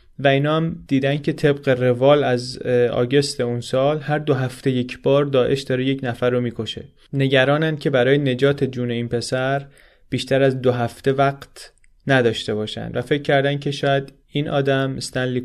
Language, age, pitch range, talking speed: Persian, 30-49, 125-145 Hz, 165 wpm